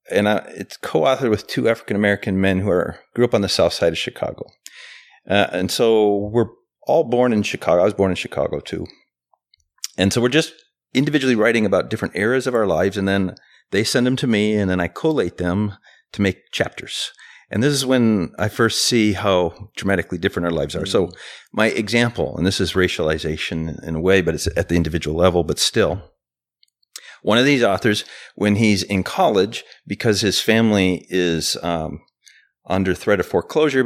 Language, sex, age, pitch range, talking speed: English, male, 40-59, 90-115 Hz, 185 wpm